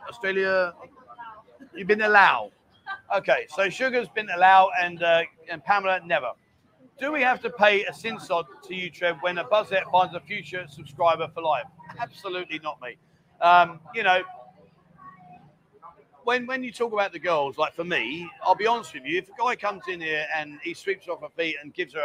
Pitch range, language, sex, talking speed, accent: 155-210 Hz, English, male, 190 wpm, British